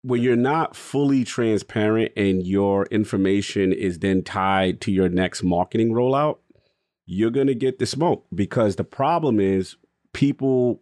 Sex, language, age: male, English, 30-49